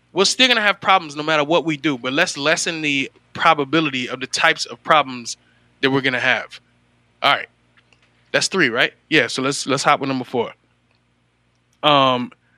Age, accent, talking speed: 20-39, American, 180 wpm